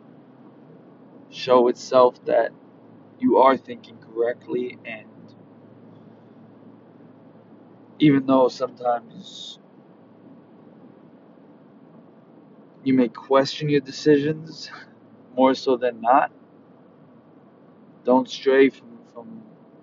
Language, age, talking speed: English, 20-39, 75 wpm